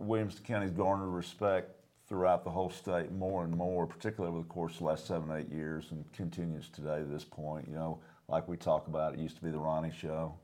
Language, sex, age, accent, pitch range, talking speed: English, male, 50-69, American, 80-90 Hz, 230 wpm